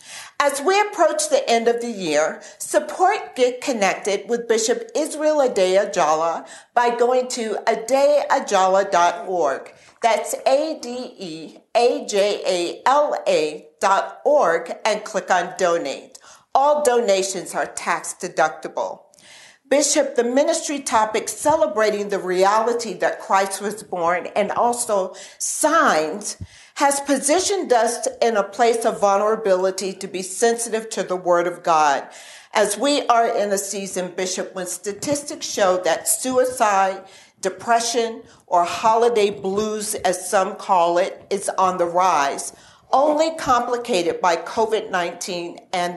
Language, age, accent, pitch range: English, 50-69, American, 185-260 Hz